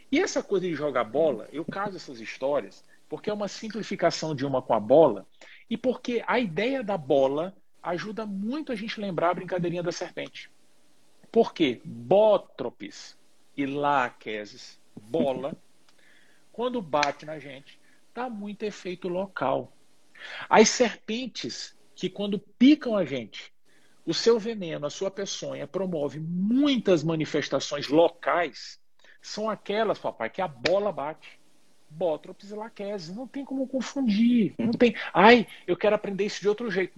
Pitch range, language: 165-230 Hz, Portuguese